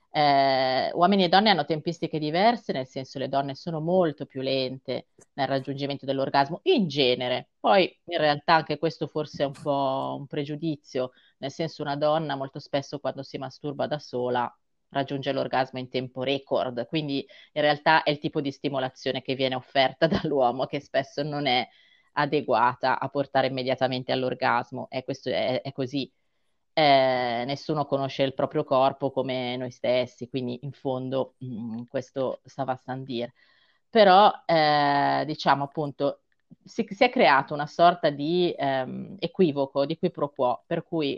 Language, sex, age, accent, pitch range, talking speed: Italian, female, 20-39, native, 130-160 Hz, 160 wpm